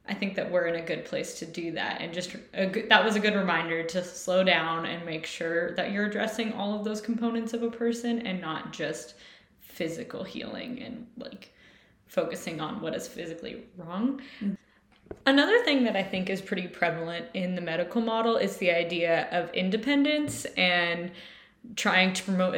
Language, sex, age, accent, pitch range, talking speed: English, female, 10-29, American, 180-235 Hz, 180 wpm